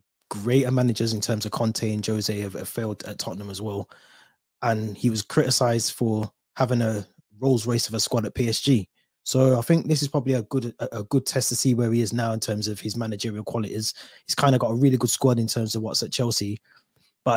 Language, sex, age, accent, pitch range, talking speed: English, male, 20-39, British, 100-120 Hz, 230 wpm